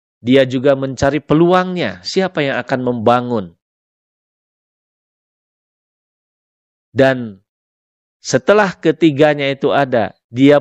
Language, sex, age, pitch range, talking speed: Indonesian, male, 40-59, 110-150 Hz, 80 wpm